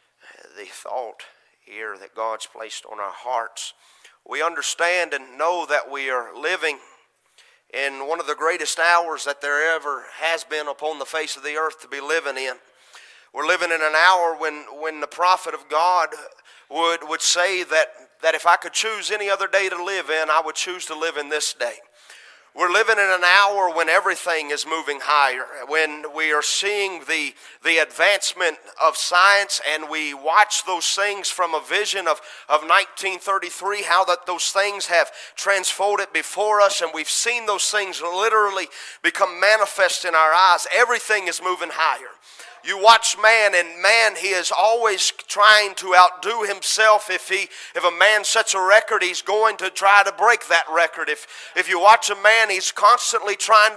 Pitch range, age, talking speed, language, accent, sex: 165-210 Hz, 30-49, 180 wpm, English, American, male